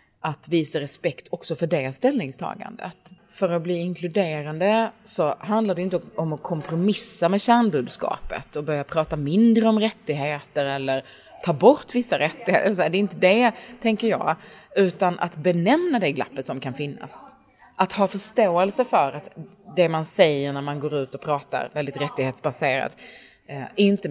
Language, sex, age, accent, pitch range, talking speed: Swedish, female, 30-49, native, 145-195 Hz, 155 wpm